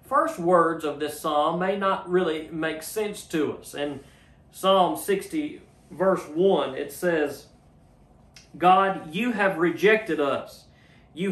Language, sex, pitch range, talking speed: English, male, 150-195 Hz, 135 wpm